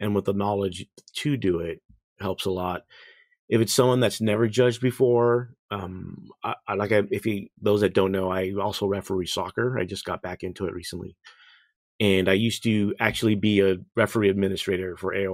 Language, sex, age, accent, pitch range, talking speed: English, male, 30-49, American, 95-105 Hz, 190 wpm